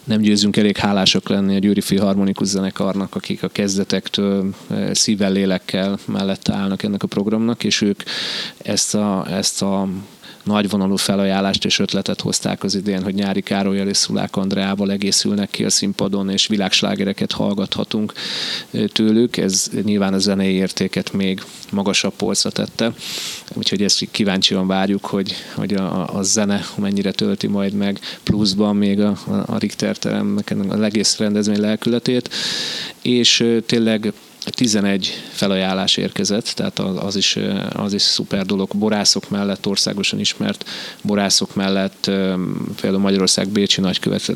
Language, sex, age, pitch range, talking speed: Hungarian, male, 30-49, 95-105 Hz, 135 wpm